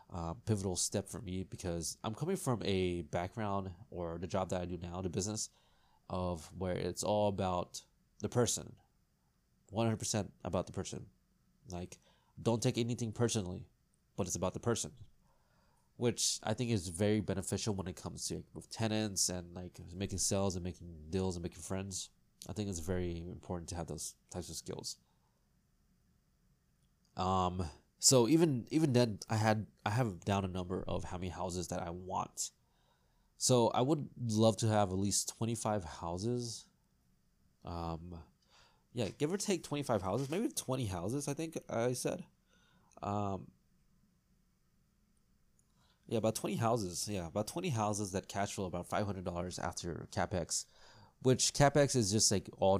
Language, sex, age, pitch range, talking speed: English, male, 20-39, 90-115 Hz, 160 wpm